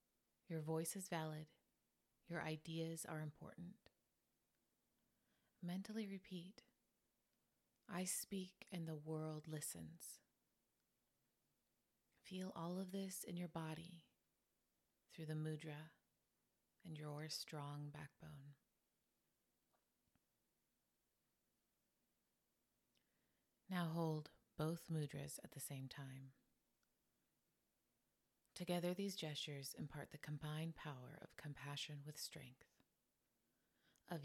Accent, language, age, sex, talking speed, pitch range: American, English, 30-49, female, 90 wpm, 145-170 Hz